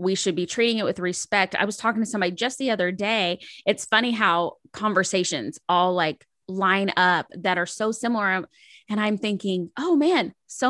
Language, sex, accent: English, female, American